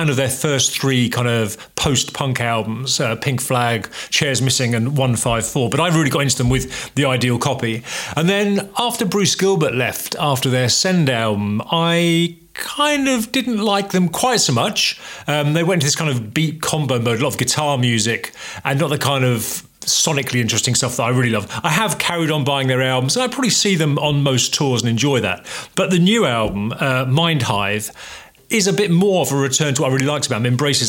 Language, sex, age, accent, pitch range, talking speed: English, male, 40-59, British, 125-160 Hz, 215 wpm